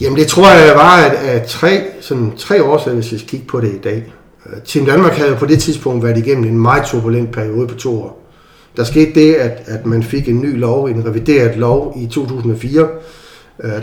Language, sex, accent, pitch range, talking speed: Danish, male, native, 115-140 Hz, 210 wpm